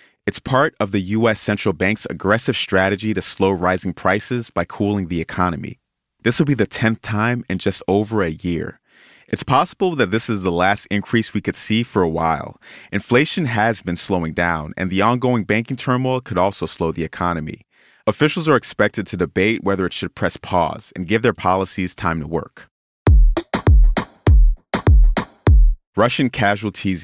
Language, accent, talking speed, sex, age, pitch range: English, American, 170 wpm, male, 30-49, 90-115 Hz